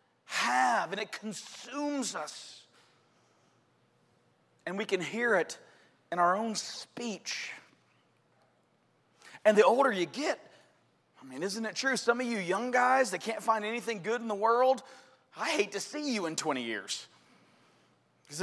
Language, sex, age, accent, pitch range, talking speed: English, male, 30-49, American, 165-245 Hz, 150 wpm